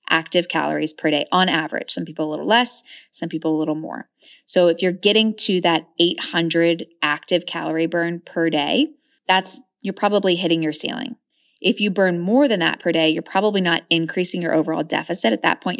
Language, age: English, 20-39